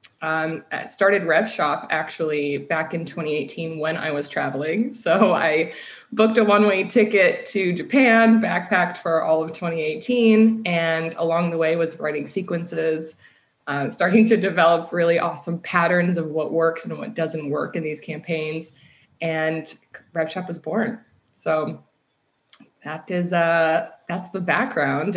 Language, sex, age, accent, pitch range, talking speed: English, female, 20-39, American, 160-180 Hz, 145 wpm